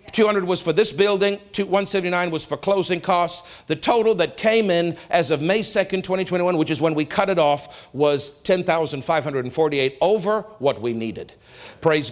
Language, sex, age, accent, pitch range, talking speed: English, male, 50-69, American, 150-195 Hz, 170 wpm